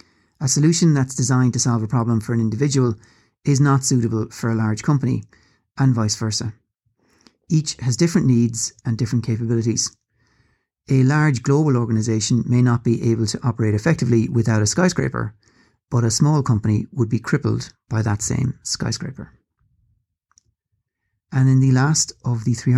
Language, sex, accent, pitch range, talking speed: English, male, Irish, 115-130 Hz, 160 wpm